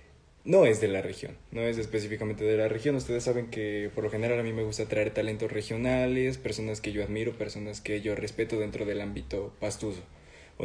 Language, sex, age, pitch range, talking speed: Spanish, male, 20-39, 105-120 Hz, 210 wpm